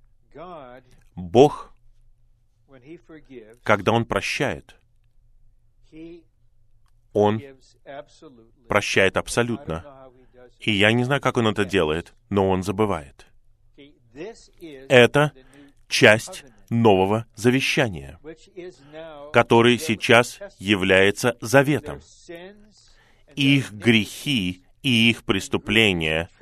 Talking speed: 70 wpm